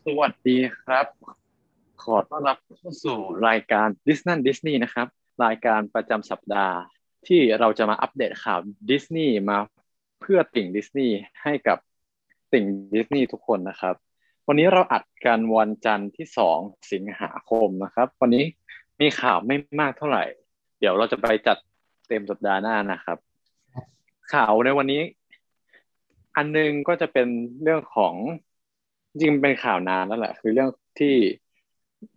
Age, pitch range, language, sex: 20-39, 105-140 Hz, Thai, male